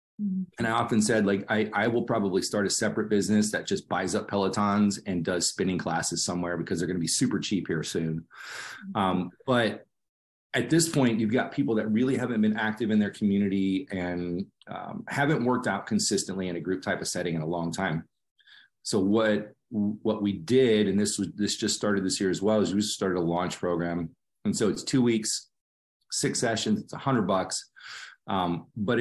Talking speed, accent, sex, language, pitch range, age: 205 wpm, American, male, English, 95-120 Hz, 30-49